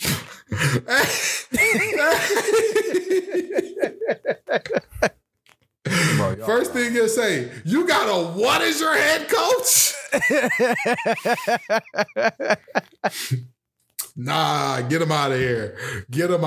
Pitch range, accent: 130-210 Hz, American